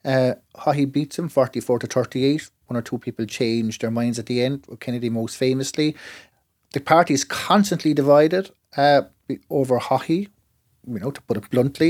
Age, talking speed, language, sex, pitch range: 30-49, 175 wpm, English, male, 125-160 Hz